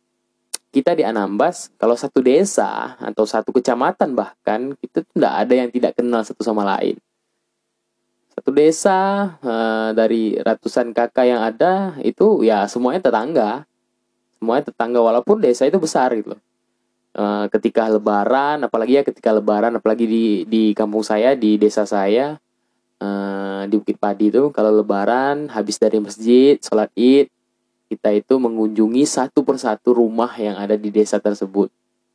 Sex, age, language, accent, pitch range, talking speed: male, 20-39, Indonesian, native, 105-125 Hz, 140 wpm